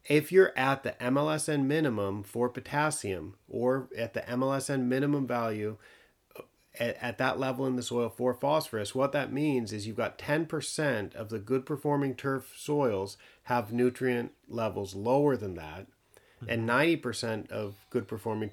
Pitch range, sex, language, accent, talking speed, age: 115-145 Hz, male, English, American, 150 wpm, 40-59